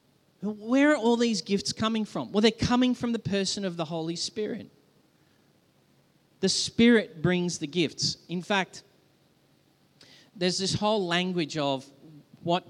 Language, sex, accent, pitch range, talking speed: English, male, Australian, 150-210 Hz, 140 wpm